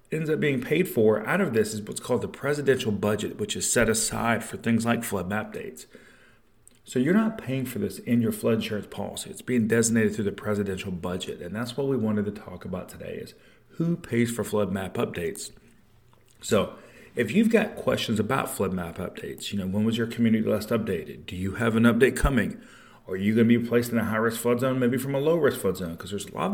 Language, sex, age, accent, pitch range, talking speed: English, male, 40-59, American, 105-135 Hz, 235 wpm